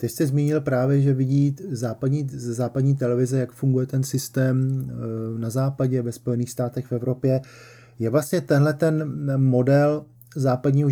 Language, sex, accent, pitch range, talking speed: Czech, male, native, 120-135 Hz, 145 wpm